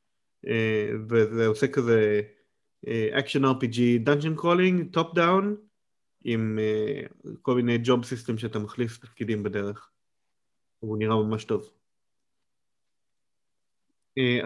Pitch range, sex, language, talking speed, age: 115-140 Hz, male, Hebrew, 110 wpm, 30-49